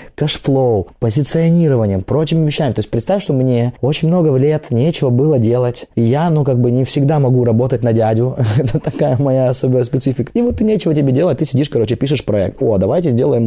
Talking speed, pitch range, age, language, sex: 200 wpm, 110-140 Hz, 20-39, Russian, male